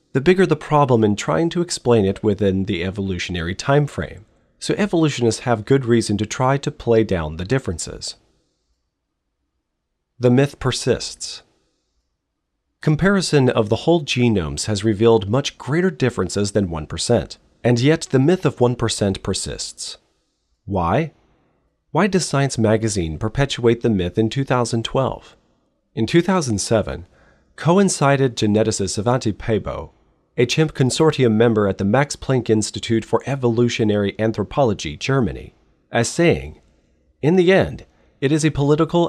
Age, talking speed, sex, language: 40-59, 130 wpm, male, English